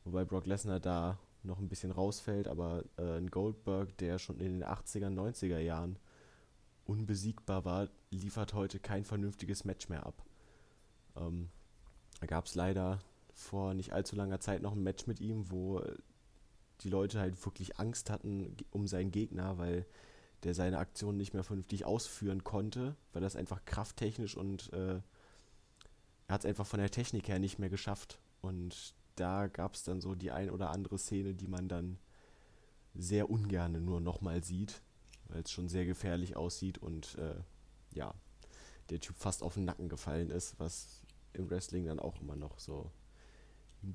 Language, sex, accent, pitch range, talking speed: German, male, German, 90-105 Hz, 170 wpm